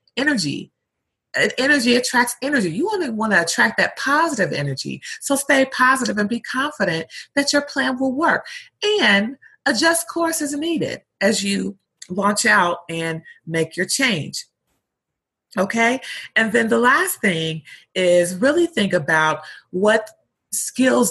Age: 30-49